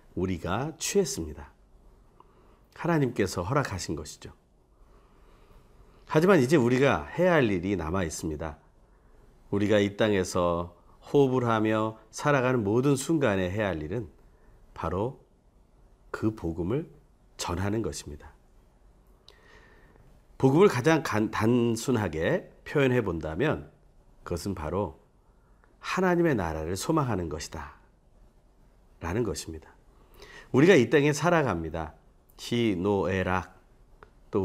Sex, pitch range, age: male, 85-130 Hz, 40-59